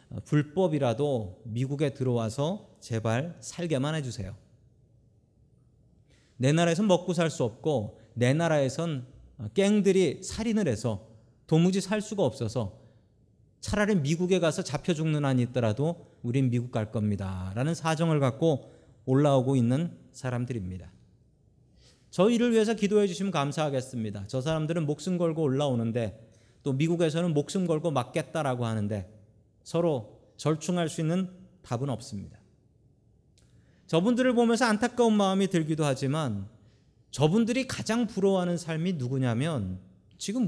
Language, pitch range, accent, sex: Korean, 120-180 Hz, native, male